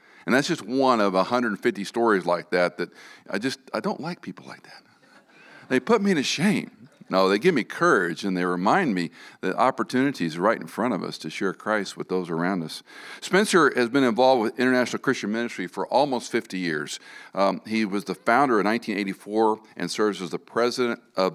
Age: 50-69